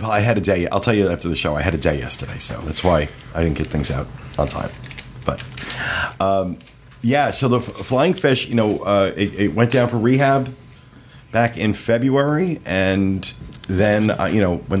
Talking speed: 205 wpm